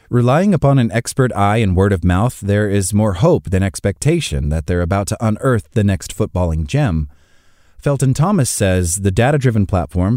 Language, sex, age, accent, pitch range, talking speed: English, male, 30-49, American, 95-125 Hz, 175 wpm